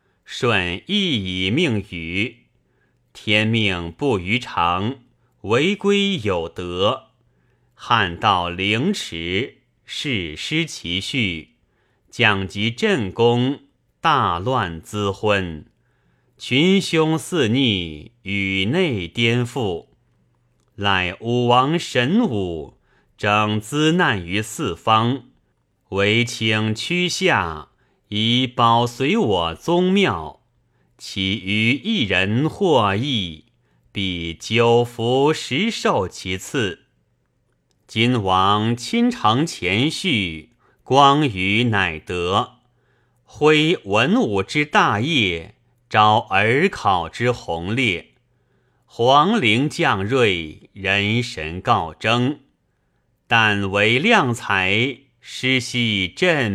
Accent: native